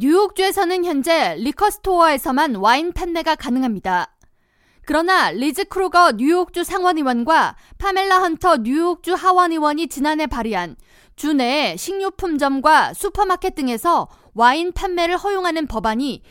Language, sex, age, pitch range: Korean, female, 20-39, 265-360 Hz